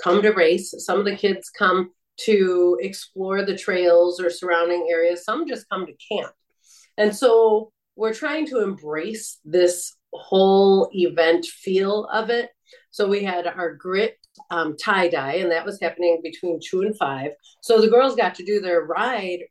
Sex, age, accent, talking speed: female, 40-59, American, 170 wpm